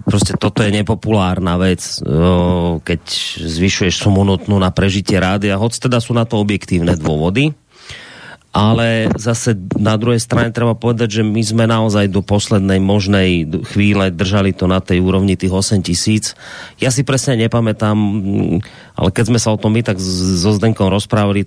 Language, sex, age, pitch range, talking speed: Slovak, male, 30-49, 95-110 Hz, 160 wpm